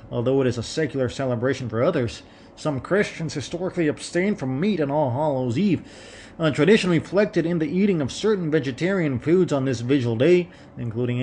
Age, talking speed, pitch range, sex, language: 30-49, 170 wpm, 120-165 Hz, male, English